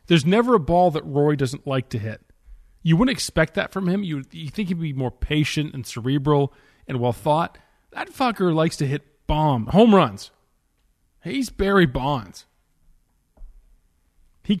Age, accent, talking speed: 40-59, American, 165 wpm